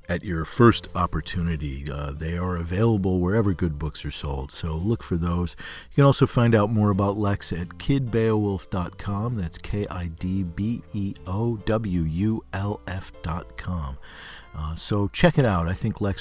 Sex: male